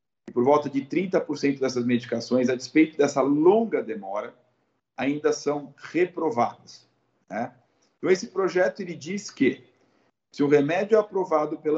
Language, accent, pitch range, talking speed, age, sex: Portuguese, Brazilian, 125-160 Hz, 140 wpm, 50-69, male